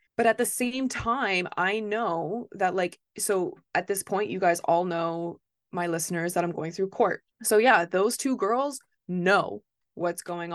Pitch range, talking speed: 170-210 Hz, 180 wpm